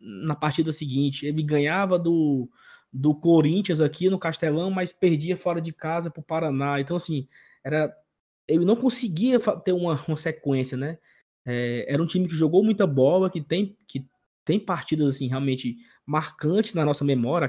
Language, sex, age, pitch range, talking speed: Portuguese, male, 20-39, 140-185 Hz, 165 wpm